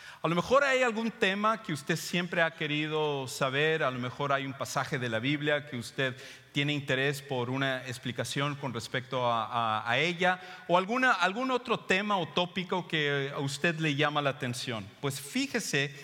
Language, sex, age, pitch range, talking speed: English, male, 40-59, 130-165 Hz, 185 wpm